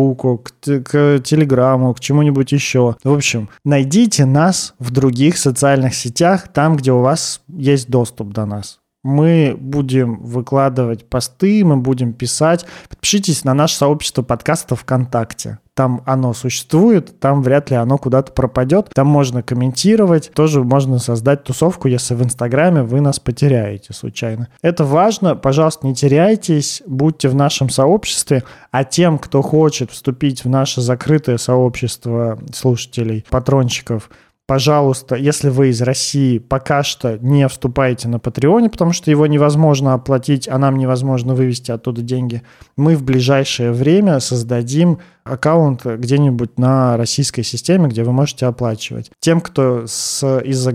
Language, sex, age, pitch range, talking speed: Russian, male, 20-39, 125-145 Hz, 135 wpm